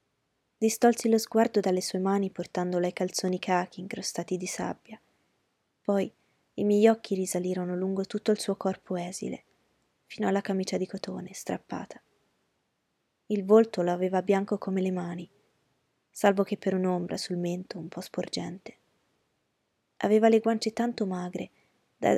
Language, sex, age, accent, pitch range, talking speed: Italian, female, 20-39, native, 185-210 Hz, 145 wpm